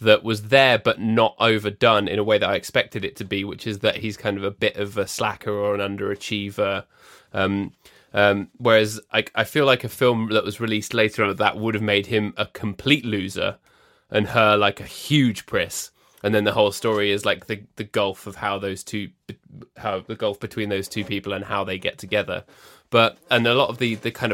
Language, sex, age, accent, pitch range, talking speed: English, male, 20-39, British, 100-120 Hz, 225 wpm